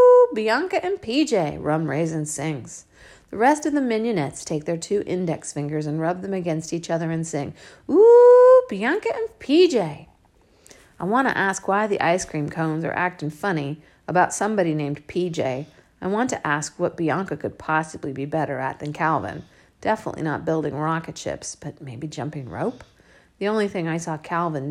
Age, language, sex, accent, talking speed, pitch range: 40-59, English, female, American, 175 wpm, 150-195 Hz